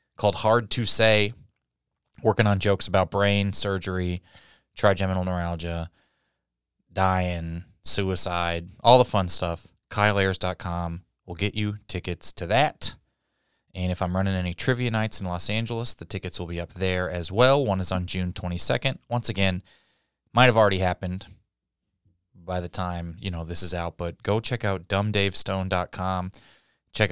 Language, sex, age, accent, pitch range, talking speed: English, male, 20-39, American, 90-110 Hz, 150 wpm